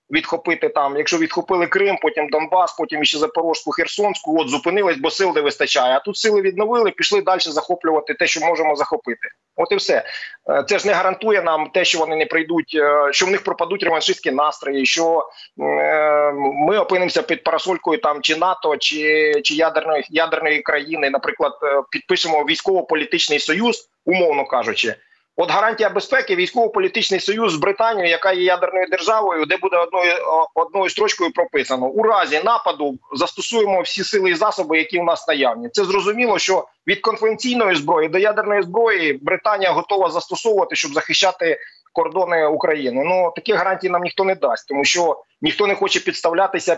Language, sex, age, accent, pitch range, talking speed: Ukrainian, male, 30-49, native, 155-205 Hz, 160 wpm